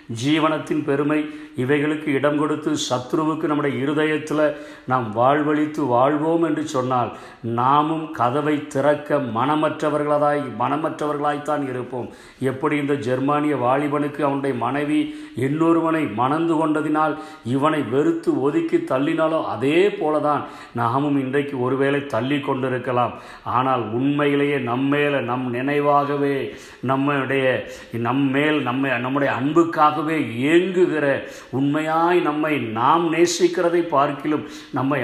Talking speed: 95 wpm